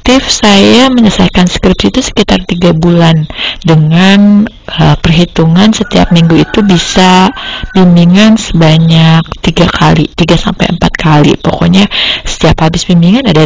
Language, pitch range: Indonesian, 160-190 Hz